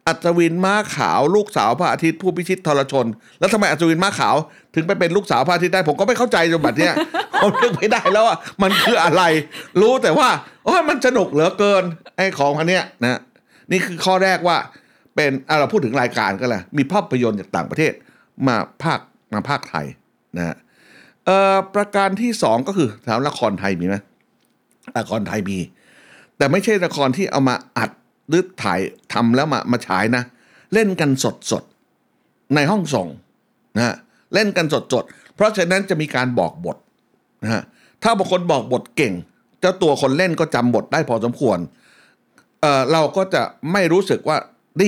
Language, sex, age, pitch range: Thai, male, 60-79, 135-195 Hz